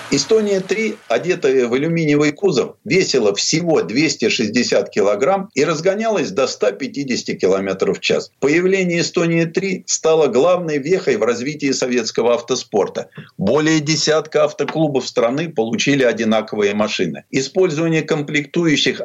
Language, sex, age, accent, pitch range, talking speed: Russian, male, 50-69, native, 130-185 Hz, 105 wpm